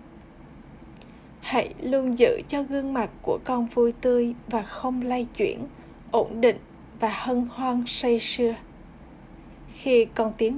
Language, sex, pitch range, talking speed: Vietnamese, female, 220-260 Hz, 135 wpm